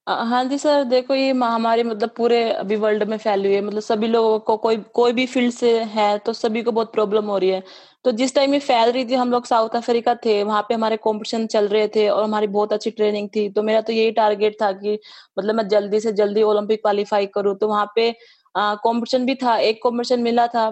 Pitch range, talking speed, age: 215-240 Hz, 240 wpm, 20-39